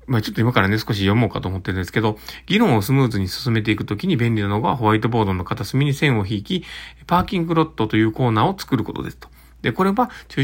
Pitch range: 110-150 Hz